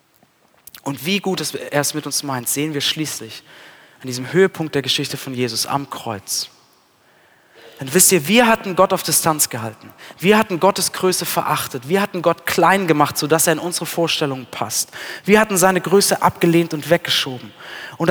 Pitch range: 140-185 Hz